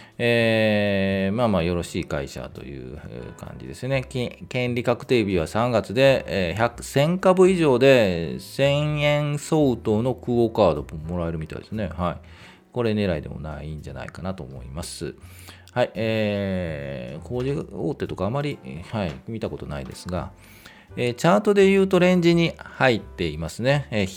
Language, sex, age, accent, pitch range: Japanese, male, 40-59, native, 90-135 Hz